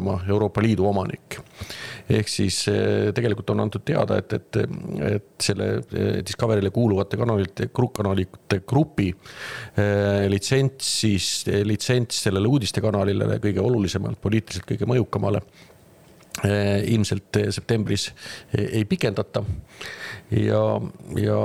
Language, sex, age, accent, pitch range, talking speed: English, male, 50-69, Finnish, 100-110 Hz, 100 wpm